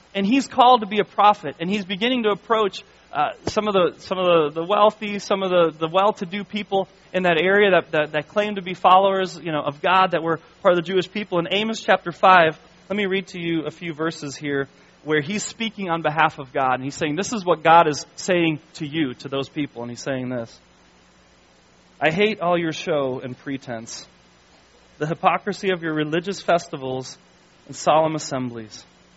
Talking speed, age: 210 wpm, 30-49